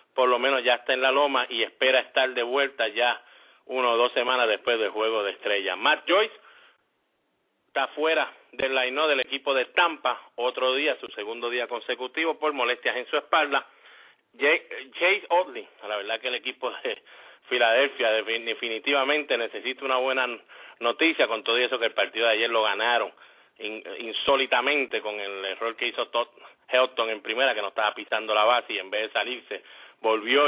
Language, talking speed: English, 175 wpm